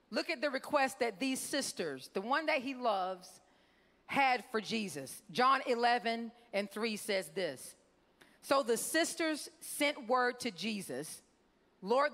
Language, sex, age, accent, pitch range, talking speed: English, female, 40-59, American, 225-300 Hz, 145 wpm